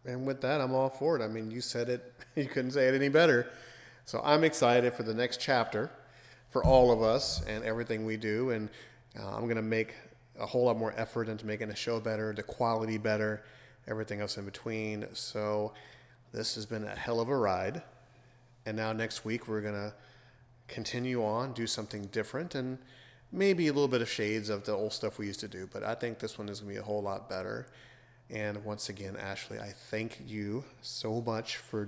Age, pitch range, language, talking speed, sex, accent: 30-49, 105-120 Hz, English, 215 wpm, male, American